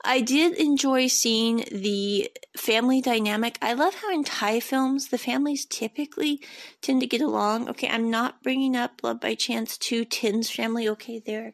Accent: American